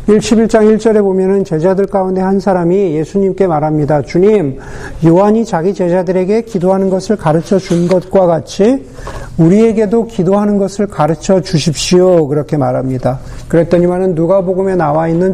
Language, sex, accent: Korean, male, native